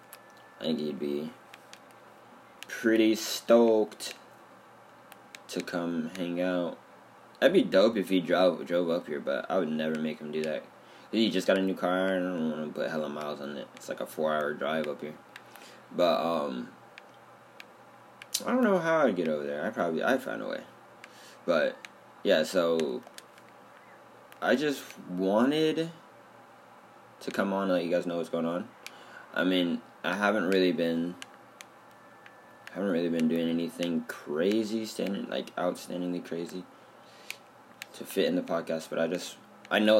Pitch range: 80-100 Hz